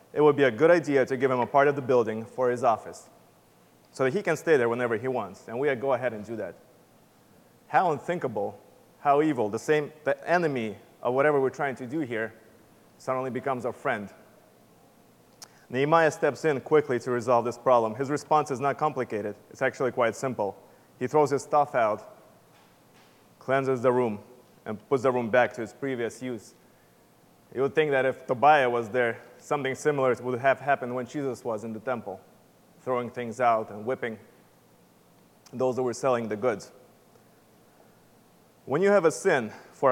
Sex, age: male, 30-49